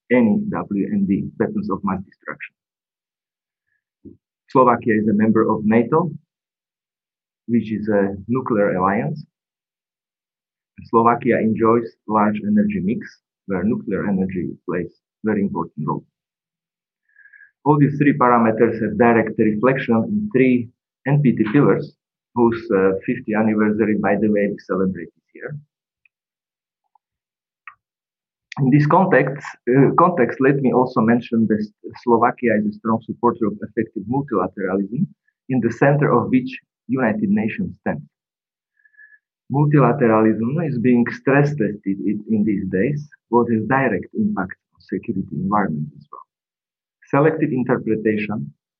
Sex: male